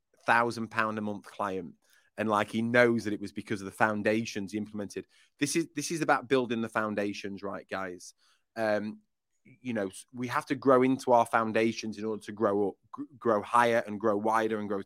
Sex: male